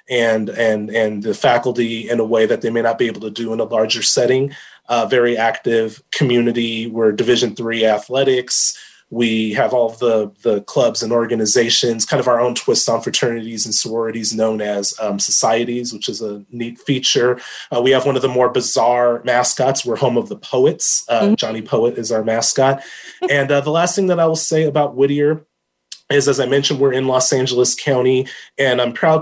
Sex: male